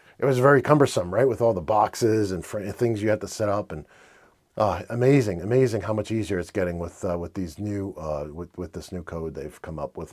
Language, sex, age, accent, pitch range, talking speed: English, male, 40-59, American, 100-130 Hz, 245 wpm